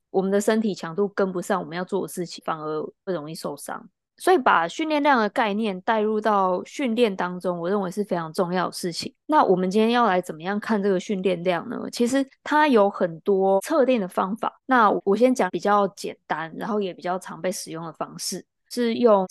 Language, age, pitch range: Chinese, 20-39, 180-225 Hz